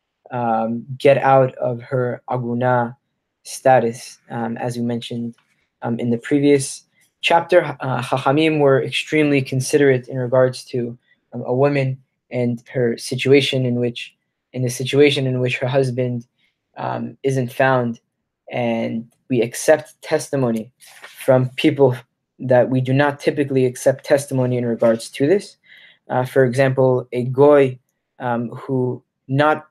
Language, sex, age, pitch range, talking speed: English, male, 20-39, 125-140 Hz, 135 wpm